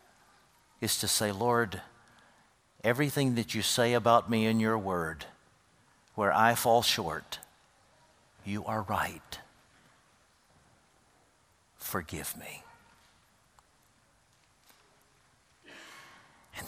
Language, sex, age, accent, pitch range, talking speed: English, male, 60-79, American, 110-165 Hz, 85 wpm